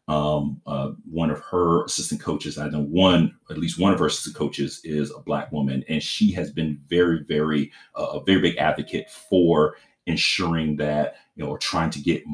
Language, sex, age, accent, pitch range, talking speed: English, male, 40-59, American, 75-85 Hz, 200 wpm